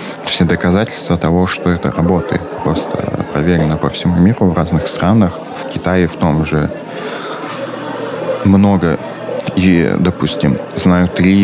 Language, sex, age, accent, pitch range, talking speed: Russian, male, 20-39, native, 80-95 Hz, 125 wpm